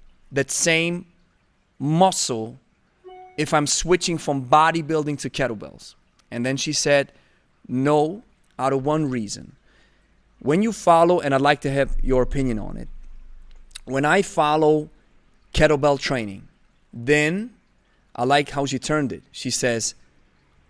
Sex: male